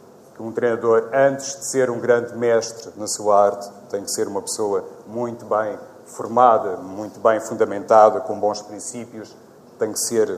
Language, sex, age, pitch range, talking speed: Portuguese, male, 40-59, 110-135 Hz, 170 wpm